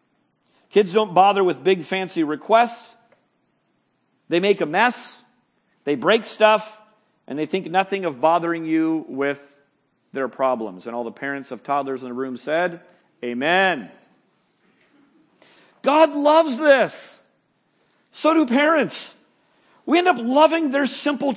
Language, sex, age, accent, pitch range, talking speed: English, male, 40-59, American, 170-280 Hz, 130 wpm